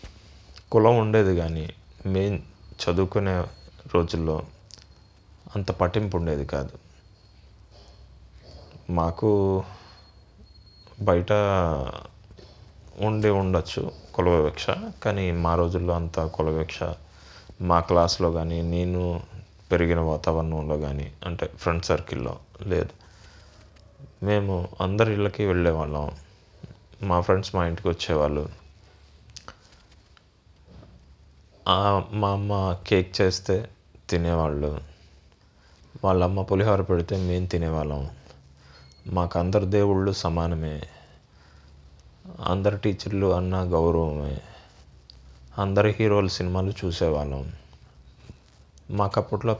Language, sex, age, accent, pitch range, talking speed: Telugu, male, 30-49, native, 80-95 Hz, 75 wpm